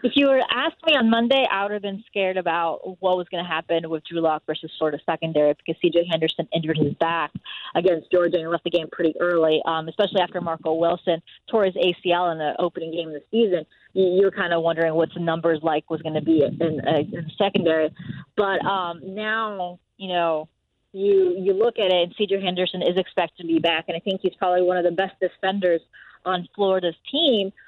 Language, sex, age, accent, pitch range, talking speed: English, female, 20-39, American, 165-200 Hz, 225 wpm